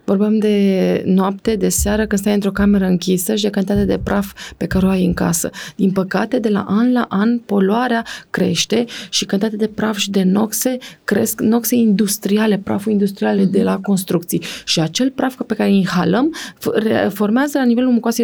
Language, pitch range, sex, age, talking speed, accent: Romanian, 190-240 Hz, female, 20-39, 185 wpm, native